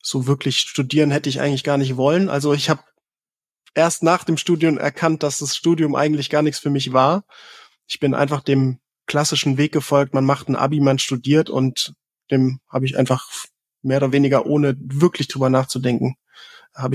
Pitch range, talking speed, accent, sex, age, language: 130-155 Hz, 185 wpm, German, male, 20-39, German